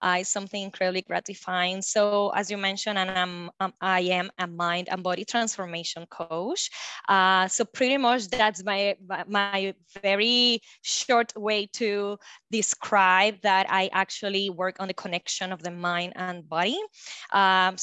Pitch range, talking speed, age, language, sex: 185-230 Hz, 150 wpm, 20-39, English, female